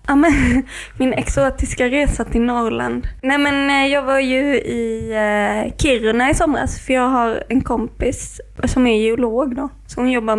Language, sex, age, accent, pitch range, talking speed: Swedish, female, 20-39, native, 225-260 Hz, 155 wpm